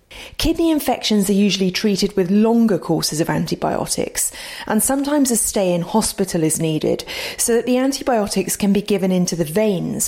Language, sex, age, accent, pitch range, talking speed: English, female, 30-49, British, 180-235 Hz, 165 wpm